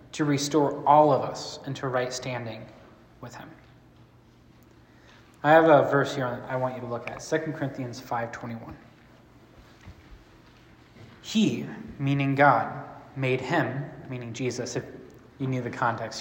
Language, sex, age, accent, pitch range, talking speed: English, male, 20-39, American, 120-145 Hz, 135 wpm